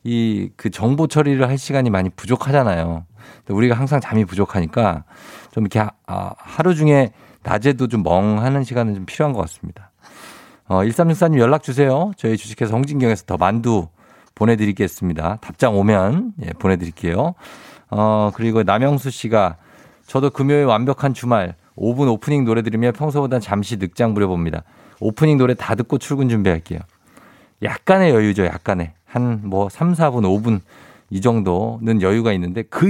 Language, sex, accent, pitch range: Korean, male, native, 95-130 Hz